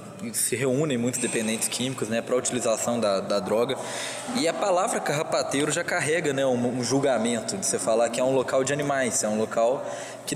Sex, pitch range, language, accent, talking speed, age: male, 125-165 Hz, Portuguese, Brazilian, 195 wpm, 20-39